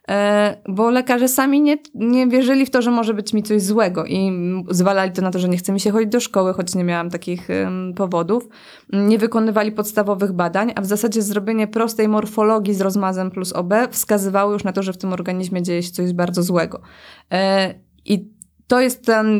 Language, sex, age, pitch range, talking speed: Polish, female, 20-39, 185-215 Hz, 195 wpm